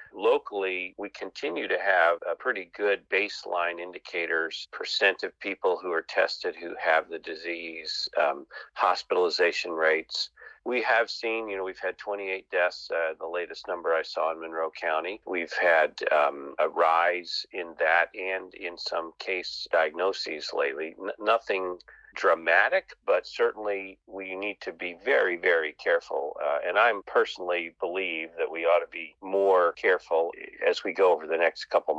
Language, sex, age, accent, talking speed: English, male, 40-59, American, 160 wpm